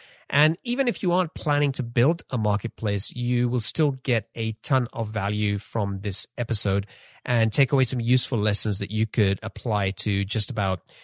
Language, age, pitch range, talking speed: English, 40-59, 100-125 Hz, 185 wpm